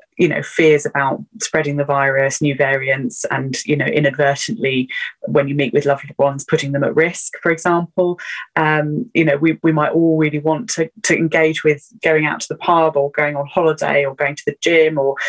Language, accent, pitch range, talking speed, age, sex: English, British, 145-170 Hz, 210 wpm, 20-39, female